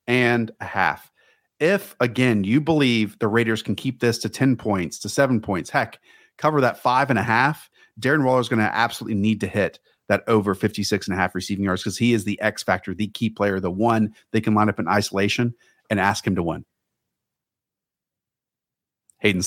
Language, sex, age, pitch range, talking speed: English, male, 40-59, 100-130 Hz, 200 wpm